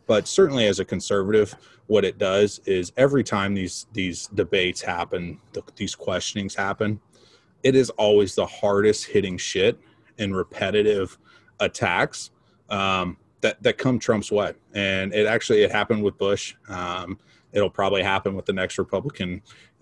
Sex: male